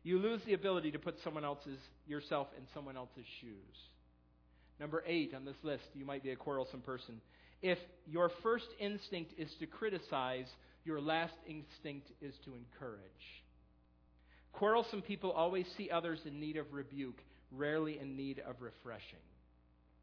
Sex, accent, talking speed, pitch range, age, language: male, American, 155 wpm, 135-205 Hz, 40-59, English